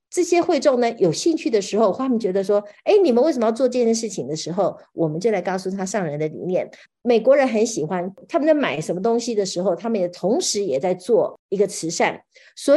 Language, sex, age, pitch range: Chinese, female, 50-69, 185-270 Hz